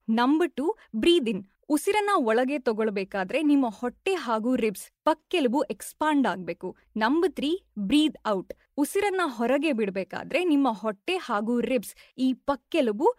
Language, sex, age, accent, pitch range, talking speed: Kannada, female, 20-39, native, 225-310 Hz, 115 wpm